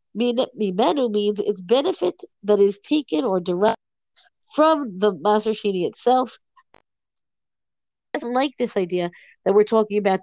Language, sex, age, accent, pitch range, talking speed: English, female, 50-69, American, 185-240 Hz, 130 wpm